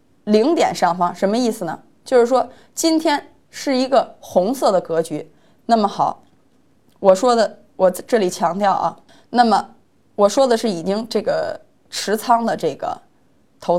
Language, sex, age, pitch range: Chinese, female, 20-39, 195-270 Hz